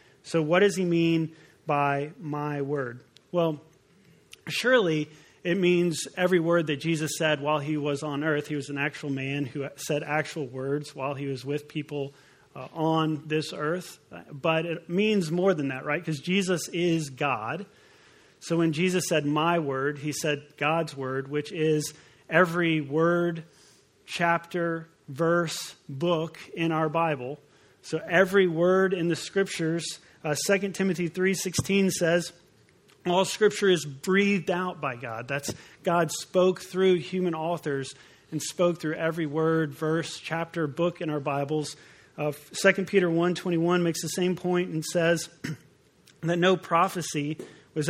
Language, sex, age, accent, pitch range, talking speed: English, male, 40-59, American, 150-175 Hz, 150 wpm